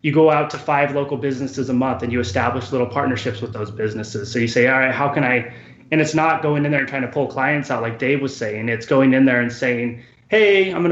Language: English